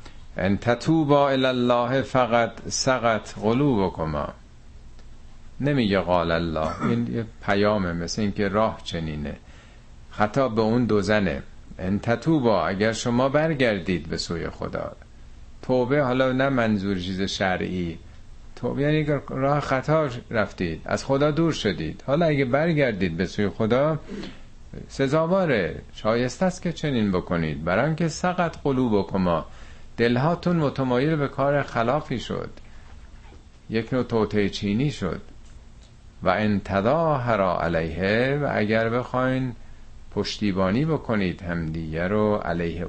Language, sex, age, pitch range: Persian, male, 50-69, 90-125 Hz